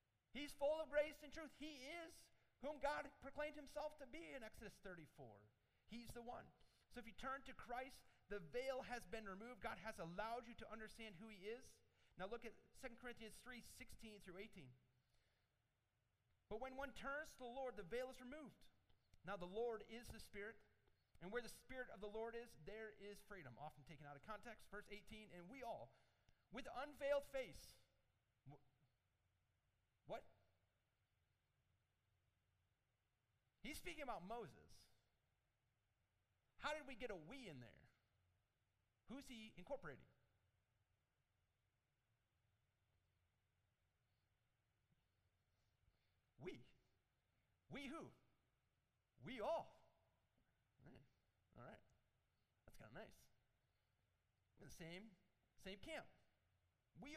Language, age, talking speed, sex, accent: English, 40-59, 130 wpm, male, American